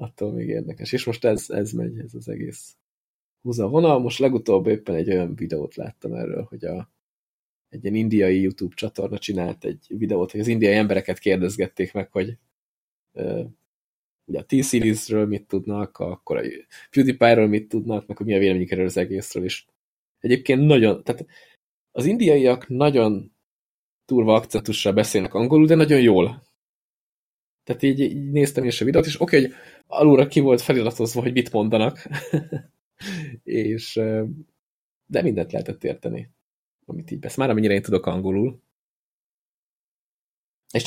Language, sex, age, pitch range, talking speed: Hungarian, male, 20-39, 100-130 Hz, 145 wpm